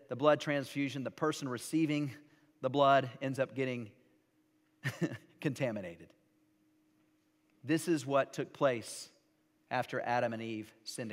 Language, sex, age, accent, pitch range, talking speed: English, male, 40-59, American, 130-165 Hz, 120 wpm